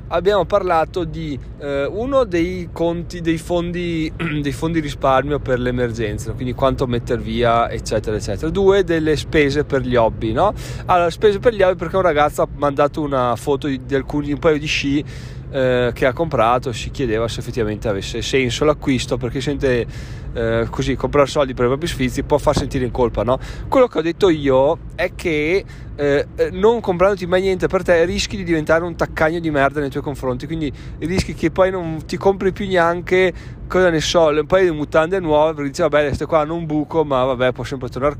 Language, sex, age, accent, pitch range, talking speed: Italian, male, 20-39, native, 125-160 Hz, 200 wpm